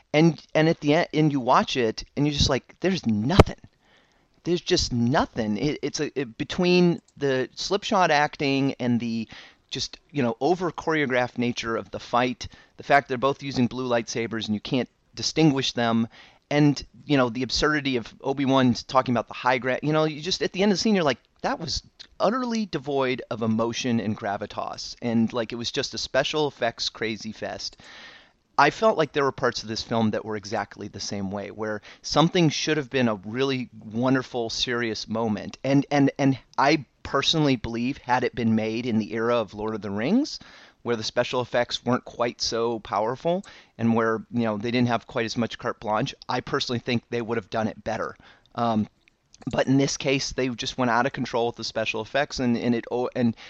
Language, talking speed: English, 205 wpm